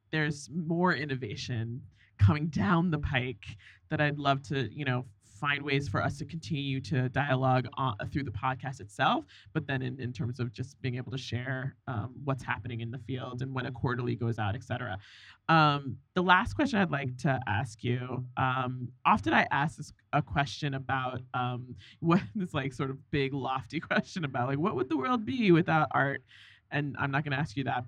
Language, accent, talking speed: English, American, 200 wpm